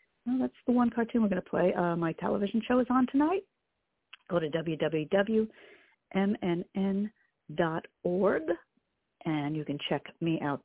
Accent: American